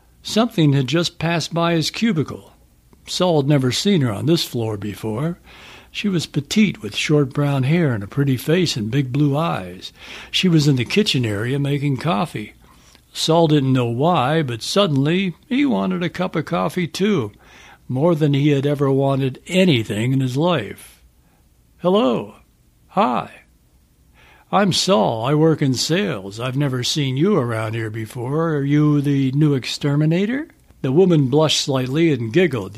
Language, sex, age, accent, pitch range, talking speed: English, male, 60-79, American, 120-165 Hz, 160 wpm